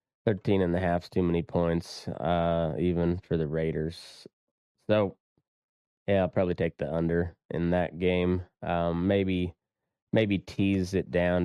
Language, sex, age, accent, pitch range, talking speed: English, male, 20-39, American, 85-100 Hz, 145 wpm